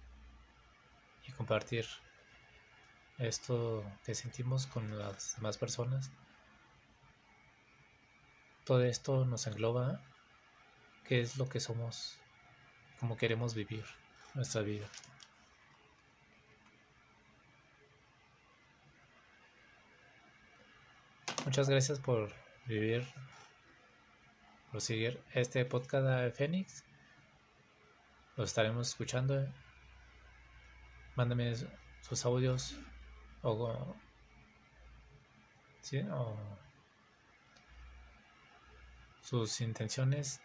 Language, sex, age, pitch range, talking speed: Spanish, male, 20-39, 90-130 Hz, 65 wpm